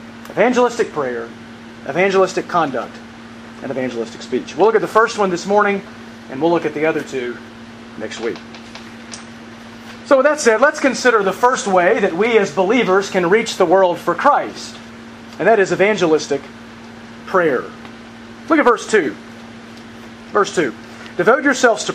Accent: American